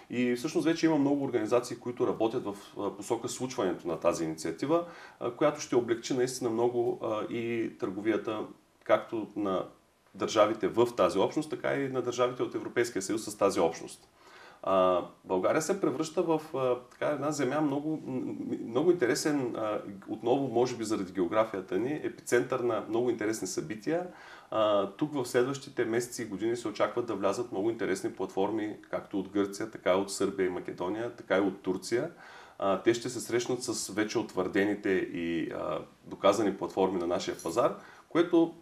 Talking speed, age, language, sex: 150 wpm, 30-49, Bulgarian, male